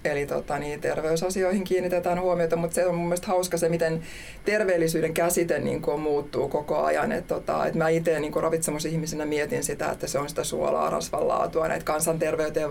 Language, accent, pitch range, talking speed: Finnish, native, 155-175 Hz, 180 wpm